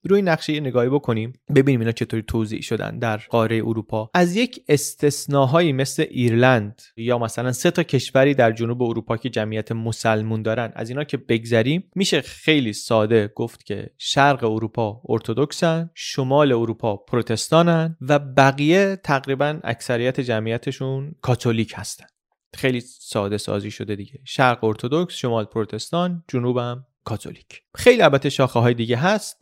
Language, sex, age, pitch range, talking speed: Persian, male, 30-49, 115-150 Hz, 140 wpm